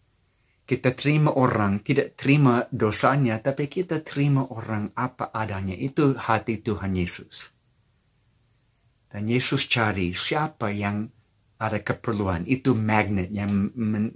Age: 50-69